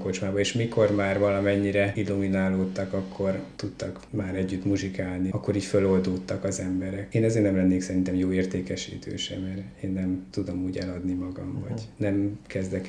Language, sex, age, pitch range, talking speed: Hungarian, male, 20-39, 95-105 Hz, 160 wpm